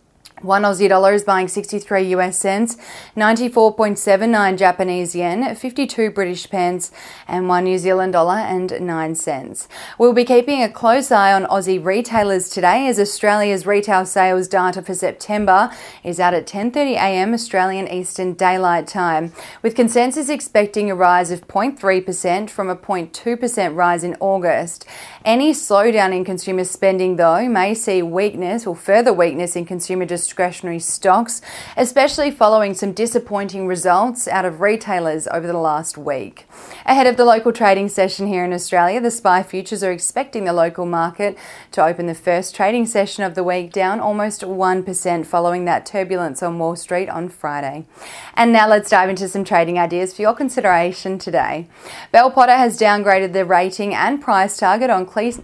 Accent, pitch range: Australian, 180-215 Hz